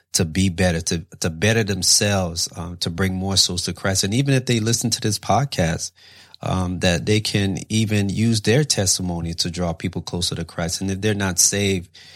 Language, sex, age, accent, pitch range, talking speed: English, male, 30-49, American, 90-110 Hz, 200 wpm